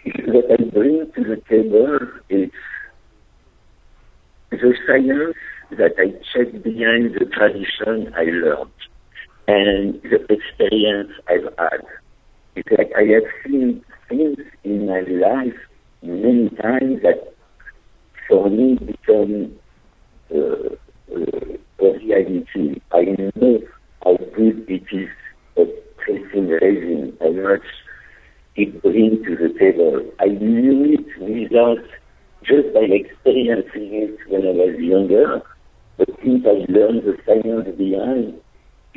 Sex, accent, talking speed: male, French, 115 wpm